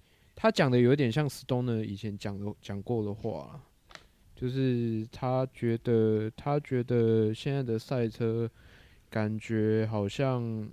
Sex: male